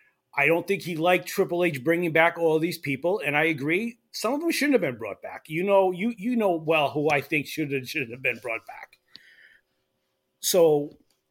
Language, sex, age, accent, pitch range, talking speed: English, male, 30-49, American, 135-175 Hz, 210 wpm